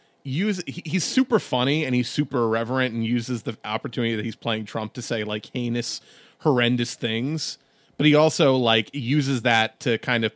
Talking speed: 180 wpm